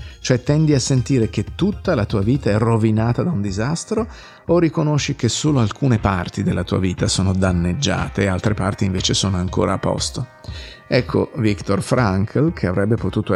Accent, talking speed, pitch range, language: native, 175 wpm, 100-135 Hz, Italian